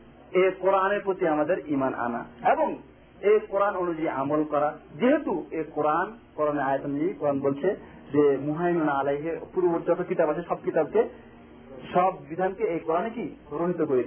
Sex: male